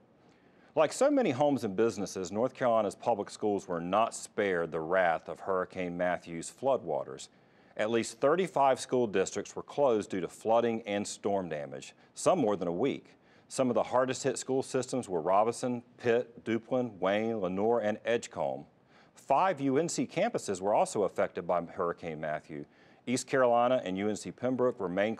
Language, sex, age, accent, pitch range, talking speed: English, male, 40-59, American, 100-130 Hz, 160 wpm